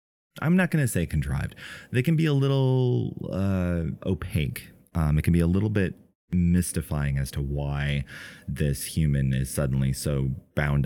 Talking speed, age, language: 165 wpm, 30-49, English